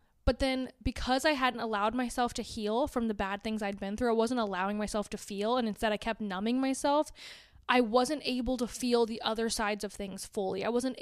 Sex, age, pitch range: female, 20-39, 205-245 Hz